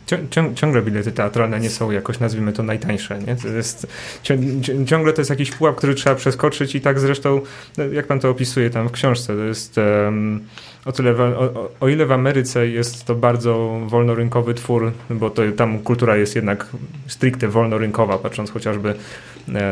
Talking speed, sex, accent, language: 185 wpm, male, native, Polish